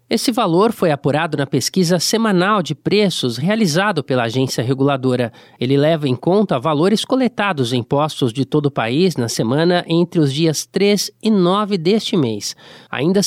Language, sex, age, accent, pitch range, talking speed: Portuguese, male, 20-39, Brazilian, 145-200 Hz, 165 wpm